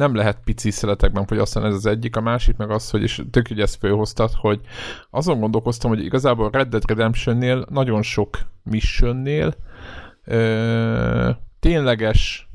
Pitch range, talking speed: 105-120 Hz, 140 wpm